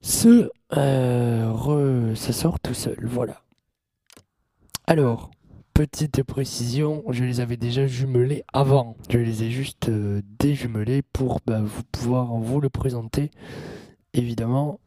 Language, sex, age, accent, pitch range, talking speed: French, male, 20-39, French, 115-140 Hz, 115 wpm